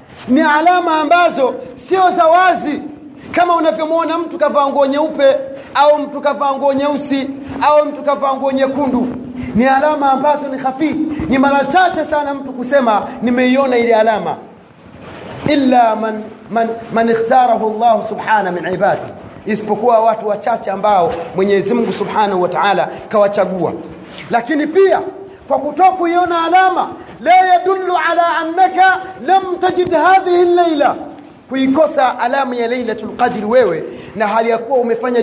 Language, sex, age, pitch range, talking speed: Swahili, male, 40-59, 230-310 Hz, 120 wpm